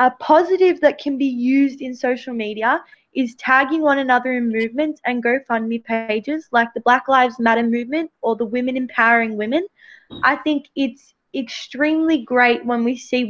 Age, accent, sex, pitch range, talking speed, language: 20-39, Australian, female, 225-275 Hz, 165 wpm, English